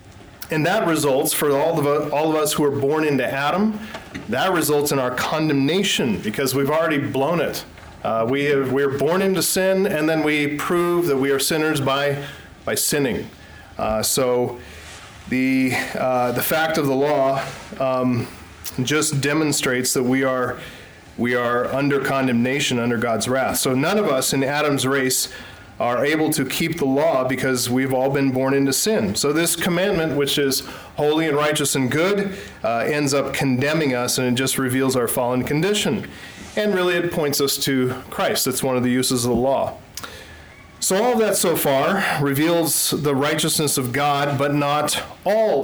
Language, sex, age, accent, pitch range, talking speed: English, male, 40-59, American, 130-155 Hz, 175 wpm